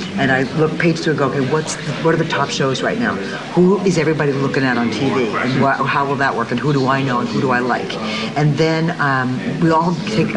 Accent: American